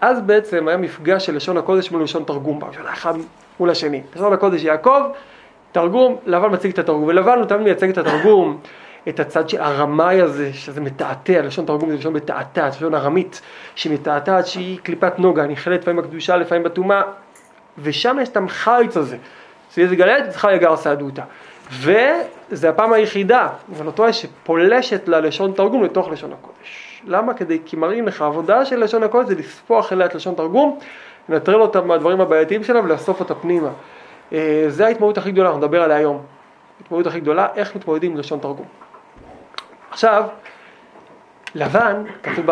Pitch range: 160-220 Hz